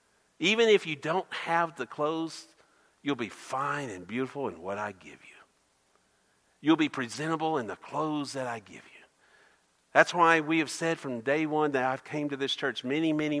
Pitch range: 140-195 Hz